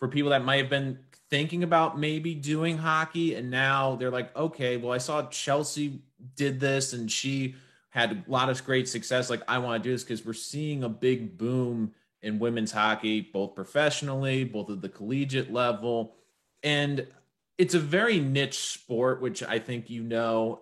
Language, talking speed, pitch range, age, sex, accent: English, 185 wpm, 115-145 Hz, 30-49, male, American